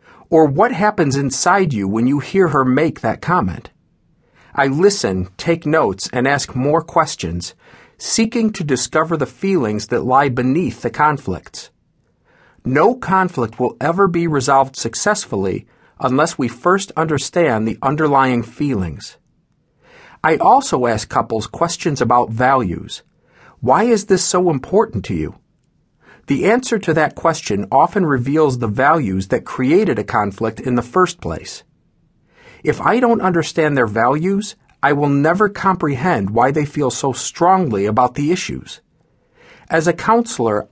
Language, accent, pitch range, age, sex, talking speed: English, American, 125-175 Hz, 50-69, male, 140 wpm